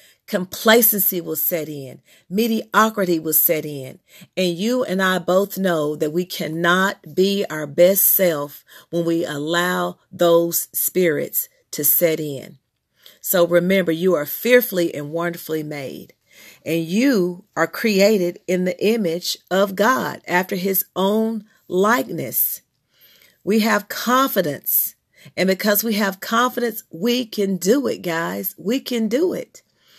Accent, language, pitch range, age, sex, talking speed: American, English, 170-220 Hz, 40-59, female, 135 wpm